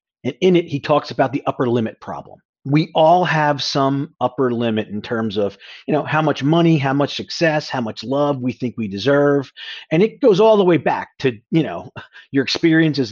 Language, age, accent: English, 40-59, American